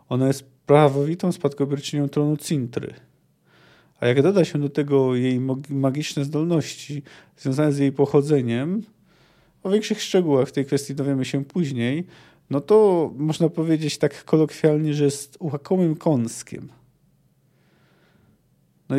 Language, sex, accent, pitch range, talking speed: Polish, male, native, 130-160 Hz, 125 wpm